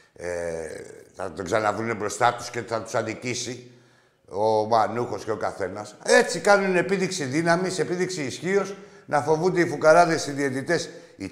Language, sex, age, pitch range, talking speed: Greek, male, 60-79, 170-225 Hz, 145 wpm